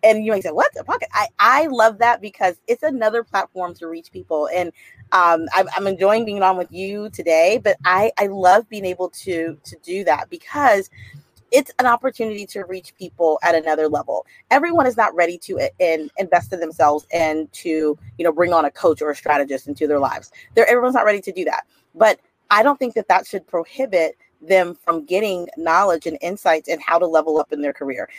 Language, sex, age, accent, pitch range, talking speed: English, female, 30-49, American, 160-215 Hz, 215 wpm